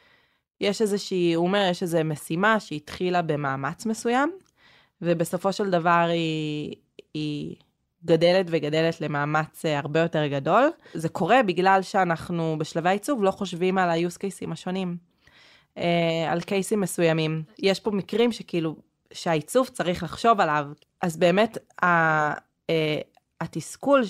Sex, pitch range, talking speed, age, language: female, 160-195 Hz, 120 wpm, 20-39, Hebrew